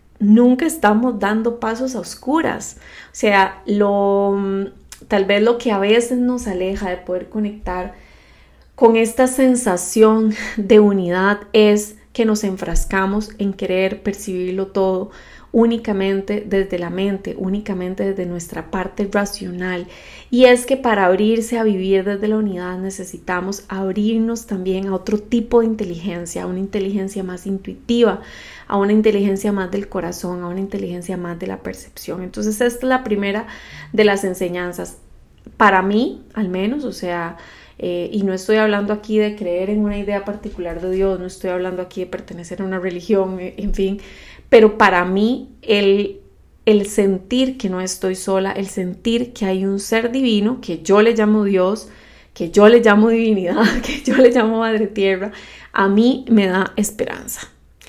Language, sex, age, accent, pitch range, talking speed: Spanish, female, 30-49, Colombian, 190-225 Hz, 160 wpm